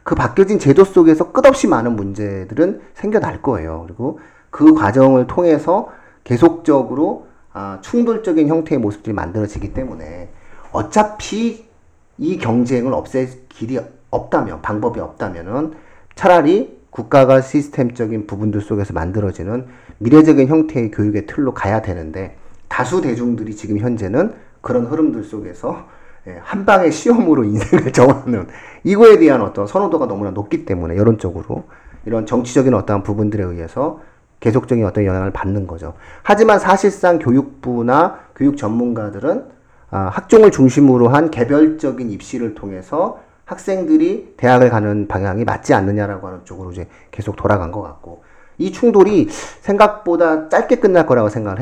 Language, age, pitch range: Korean, 40-59, 105-155 Hz